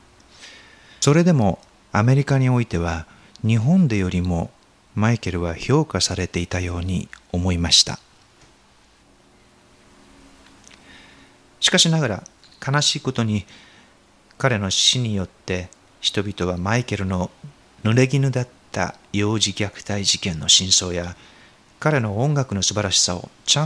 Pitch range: 90-125 Hz